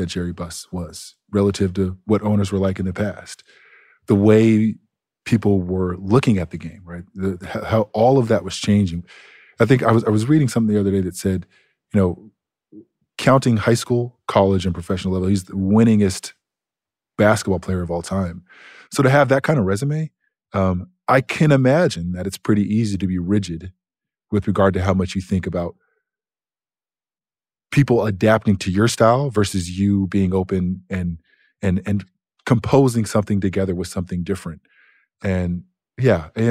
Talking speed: 175 wpm